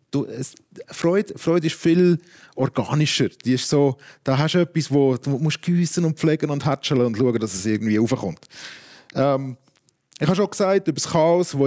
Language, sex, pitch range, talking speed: German, male, 125-165 Hz, 180 wpm